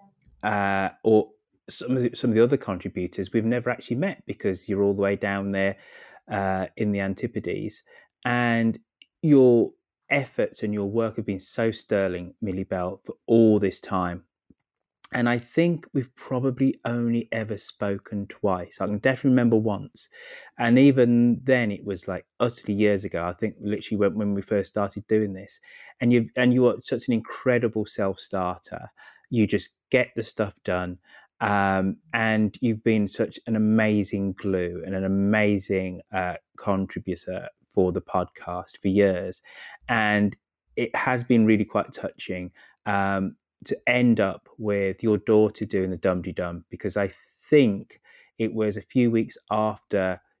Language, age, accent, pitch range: English, 30-49, British, 95-115 Hz